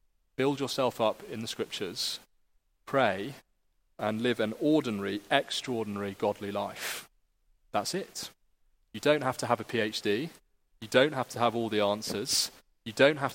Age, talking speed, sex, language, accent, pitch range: 30-49, 155 wpm, male, English, British, 105-130 Hz